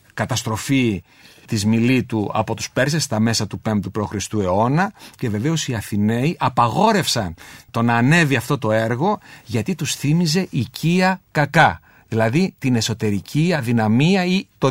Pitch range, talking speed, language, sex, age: 115-160 Hz, 140 wpm, Greek, male, 50-69